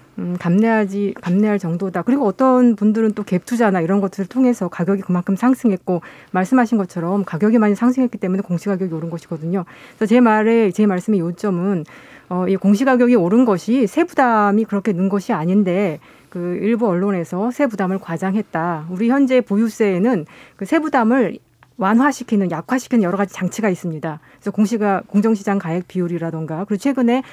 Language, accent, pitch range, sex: Korean, native, 180-235 Hz, female